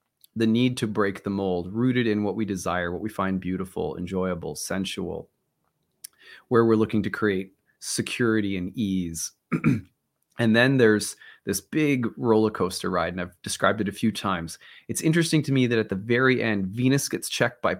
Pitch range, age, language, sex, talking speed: 100-125 Hz, 30-49, English, male, 180 wpm